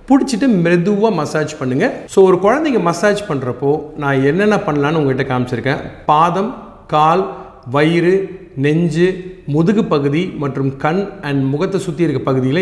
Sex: male